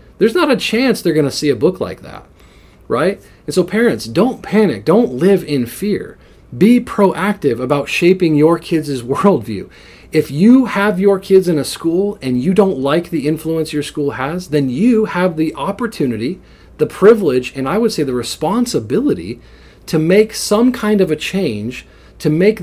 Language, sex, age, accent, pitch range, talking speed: English, male, 40-59, American, 140-190 Hz, 180 wpm